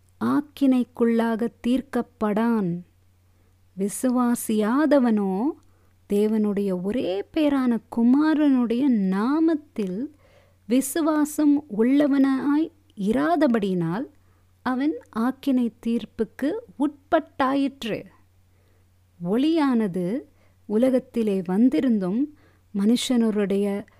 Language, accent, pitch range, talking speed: Tamil, native, 175-260 Hz, 50 wpm